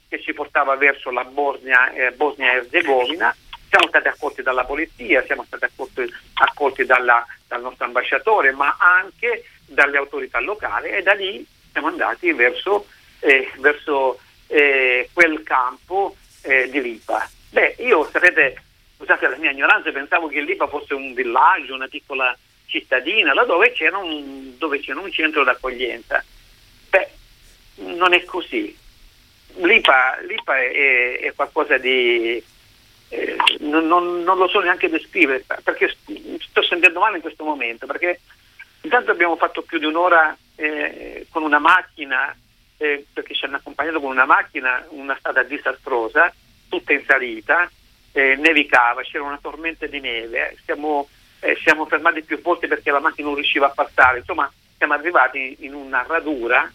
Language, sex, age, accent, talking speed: Italian, male, 50-69, native, 150 wpm